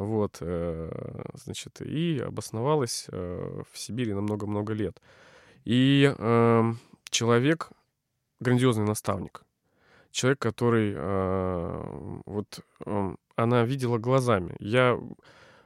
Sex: male